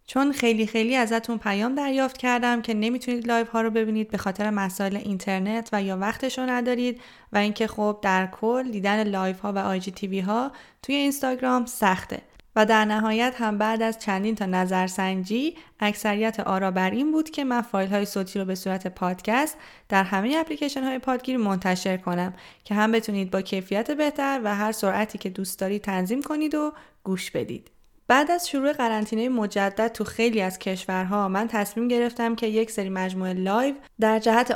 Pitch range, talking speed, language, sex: 195-245 Hz, 175 wpm, Persian, female